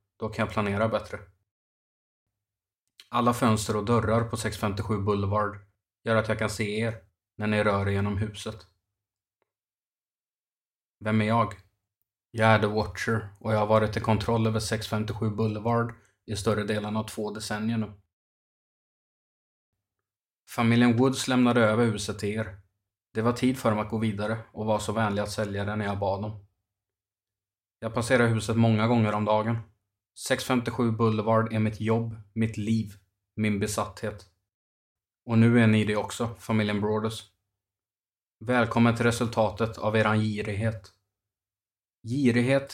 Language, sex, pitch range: Swedish, male, 105-115 Hz